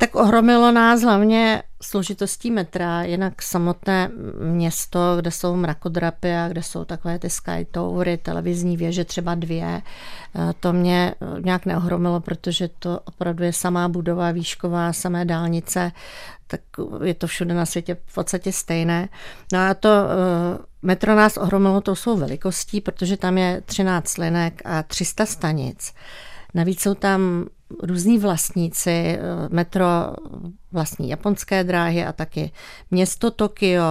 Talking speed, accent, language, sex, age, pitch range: 130 wpm, native, Czech, female, 40-59, 175-195 Hz